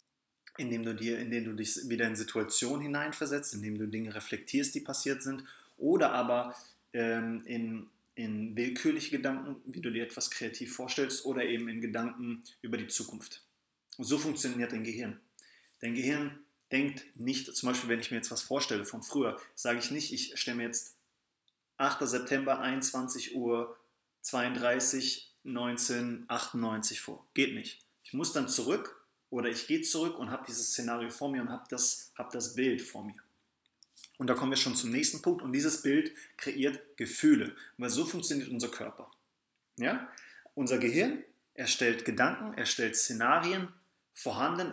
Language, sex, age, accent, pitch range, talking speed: English, male, 30-49, German, 120-145 Hz, 160 wpm